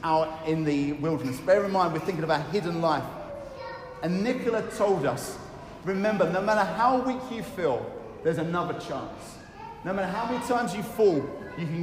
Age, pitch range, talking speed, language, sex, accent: 40-59, 170-220 Hz, 180 wpm, English, male, British